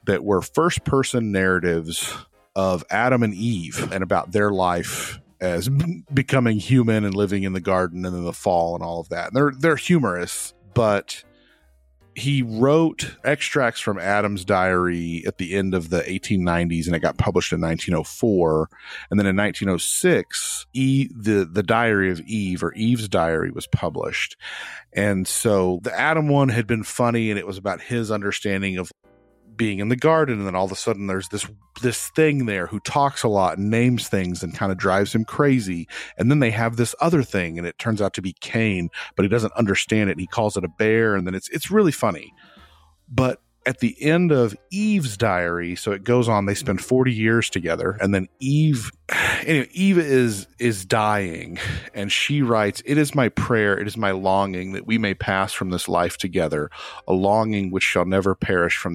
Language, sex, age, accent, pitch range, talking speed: English, male, 40-59, American, 90-120 Hz, 195 wpm